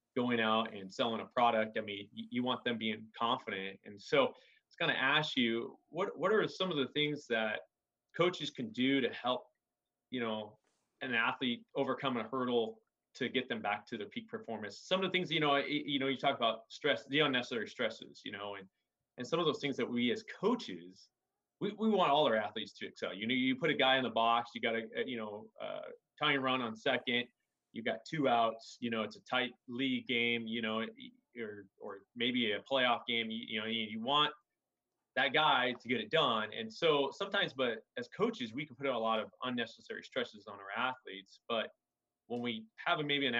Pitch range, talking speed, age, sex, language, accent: 115-150 Hz, 220 wpm, 30-49, male, English, American